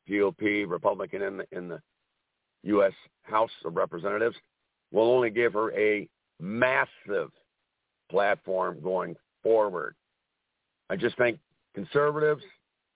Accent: American